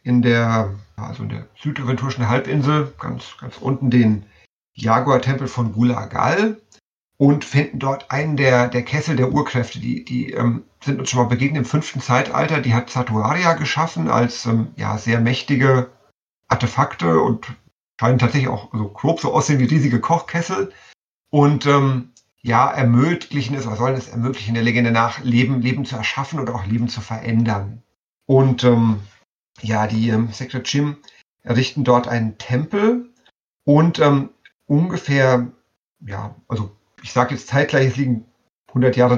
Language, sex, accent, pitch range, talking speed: German, male, German, 120-140 Hz, 150 wpm